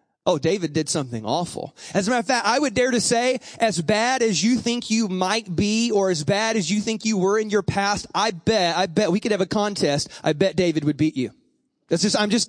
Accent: American